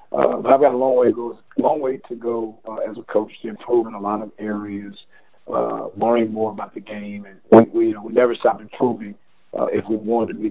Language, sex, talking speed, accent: English, male, 255 wpm, American